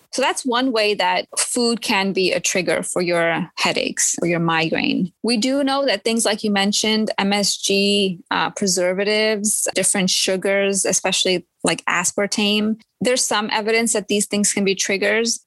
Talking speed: 160 wpm